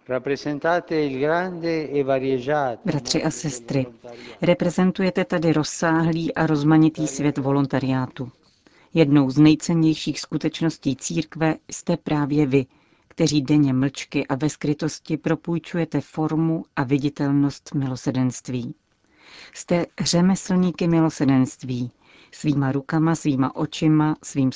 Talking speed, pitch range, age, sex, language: 90 wpm, 140-160 Hz, 40-59, female, Czech